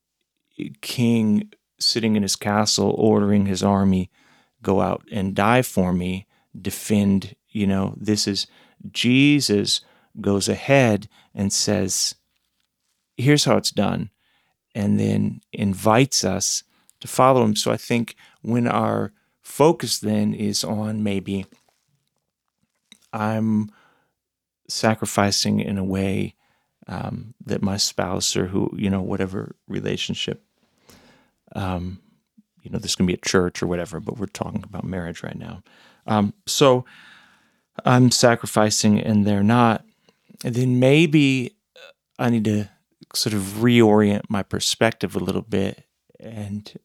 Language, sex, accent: English, male, American